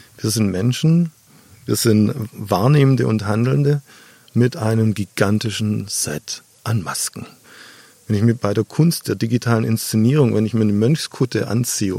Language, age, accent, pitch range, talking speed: German, 50-69, German, 110-140 Hz, 145 wpm